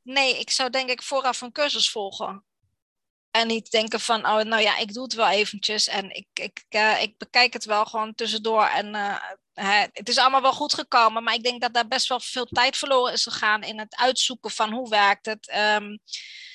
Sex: female